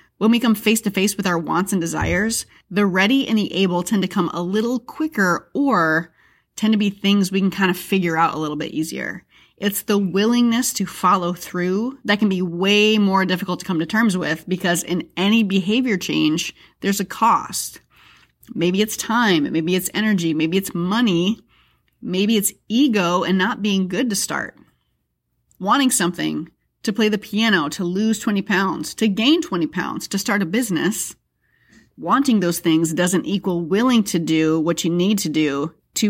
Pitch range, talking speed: 175-225 Hz, 185 wpm